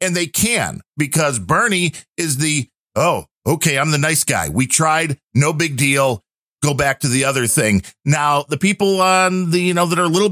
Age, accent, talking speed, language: 50-69, American, 205 wpm, English